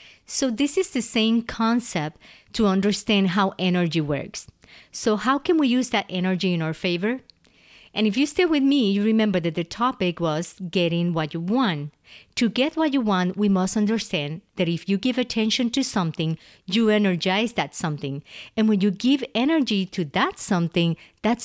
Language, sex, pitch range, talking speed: English, female, 175-230 Hz, 180 wpm